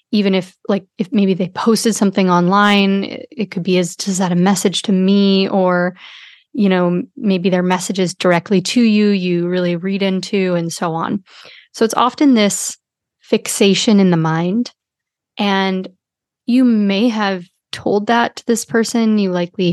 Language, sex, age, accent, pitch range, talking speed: English, female, 30-49, American, 185-220 Hz, 165 wpm